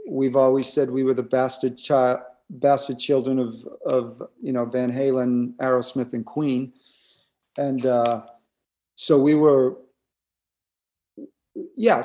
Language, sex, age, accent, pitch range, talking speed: English, male, 50-69, American, 125-160 Hz, 125 wpm